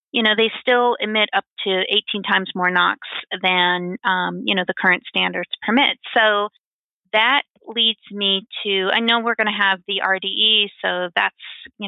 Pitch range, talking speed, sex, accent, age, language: 190-220 Hz, 175 wpm, female, American, 30-49, English